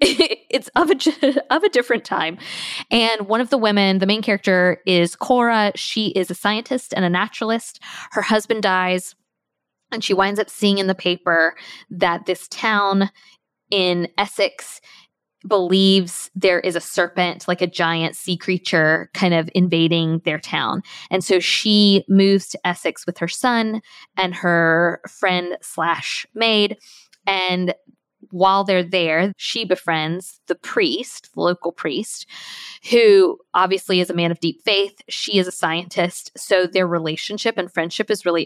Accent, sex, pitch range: American, female, 175-215 Hz